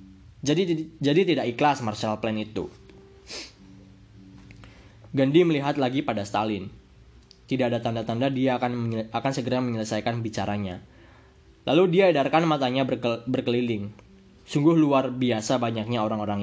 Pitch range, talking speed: 110-140 Hz, 120 wpm